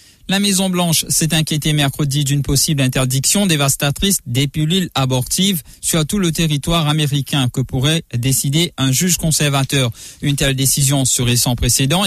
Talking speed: 145 wpm